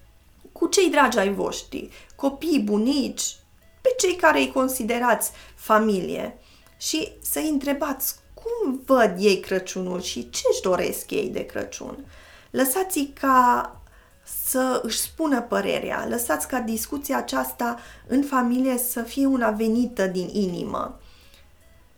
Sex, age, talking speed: female, 20-39, 125 wpm